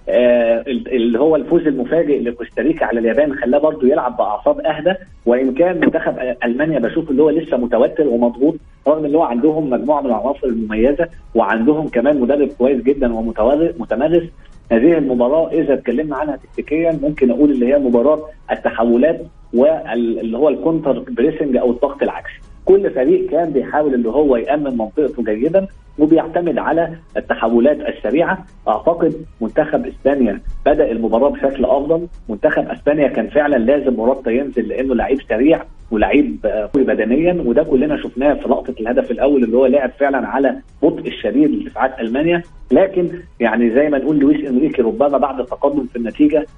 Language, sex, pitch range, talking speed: Arabic, male, 120-160 Hz, 150 wpm